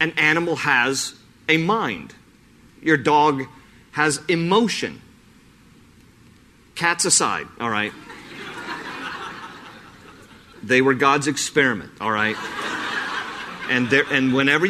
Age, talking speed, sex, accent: 40-59, 90 wpm, male, American